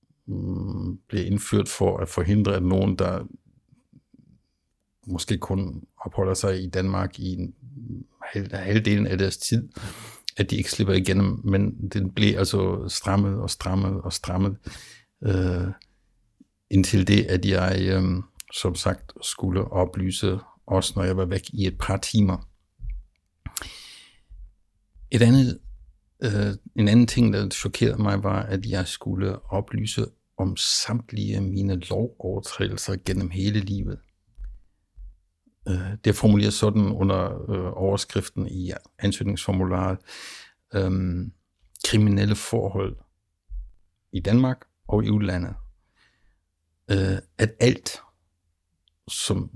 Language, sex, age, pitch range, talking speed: Danish, male, 60-79, 90-105 Hz, 110 wpm